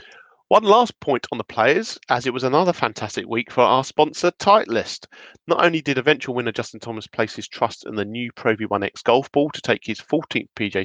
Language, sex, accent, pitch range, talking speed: English, male, British, 110-155 Hz, 210 wpm